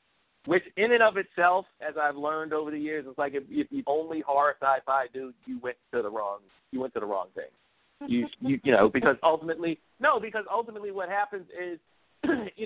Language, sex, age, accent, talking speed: English, male, 50-69, American, 215 wpm